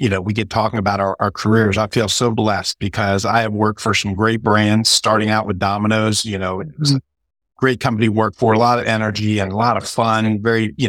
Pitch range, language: 100-120 Hz, English